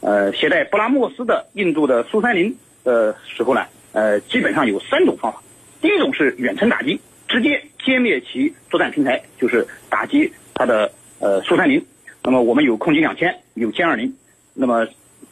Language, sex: Chinese, male